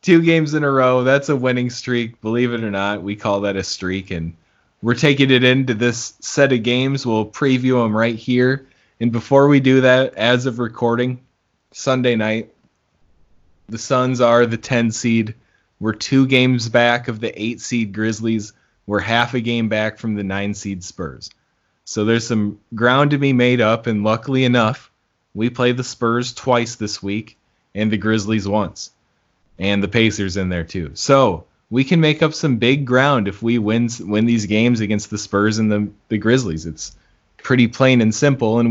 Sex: male